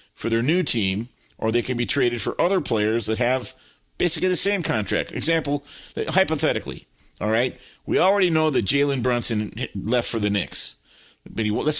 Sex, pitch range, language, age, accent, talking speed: male, 115-145 Hz, English, 50-69, American, 185 wpm